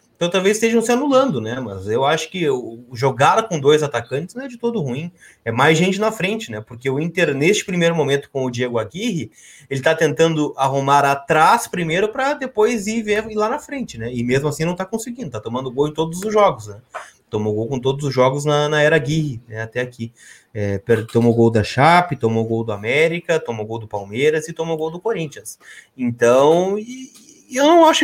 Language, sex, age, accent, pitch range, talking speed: Portuguese, male, 20-39, Brazilian, 120-200 Hz, 215 wpm